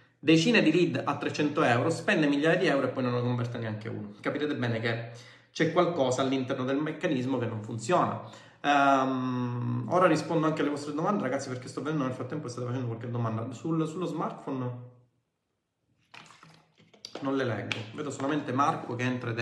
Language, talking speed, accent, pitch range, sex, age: Italian, 180 wpm, native, 125-155 Hz, male, 30-49